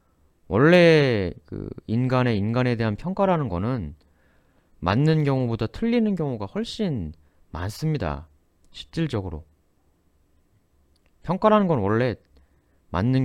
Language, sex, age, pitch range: Korean, male, 30-49, 80-125 Hz